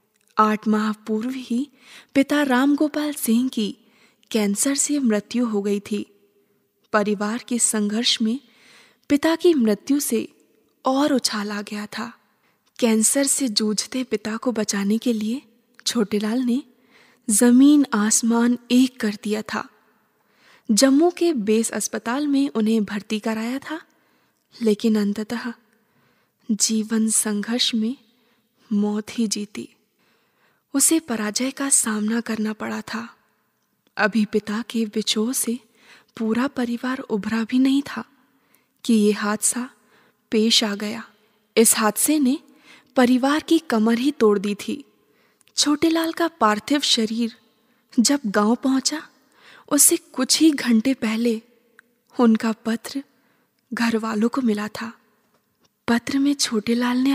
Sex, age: female, 20-39